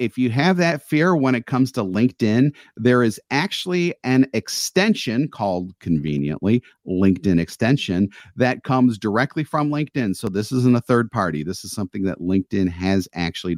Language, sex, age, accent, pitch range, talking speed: English, male, 40-59, American, 100-130 Hz, 165 wpm